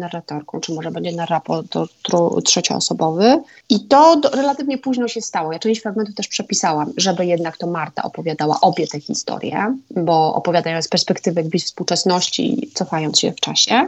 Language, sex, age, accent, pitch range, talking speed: Polish, female, 30-49, native, 175-235 Hz, 160 wpm